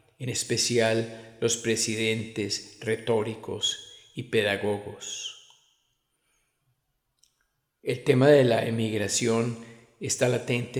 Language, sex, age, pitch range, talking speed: Spanish, male, 50-69, 110-125 Hz, 80 wpm